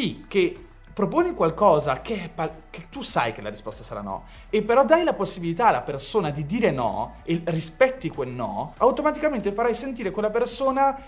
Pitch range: 160-230 Hz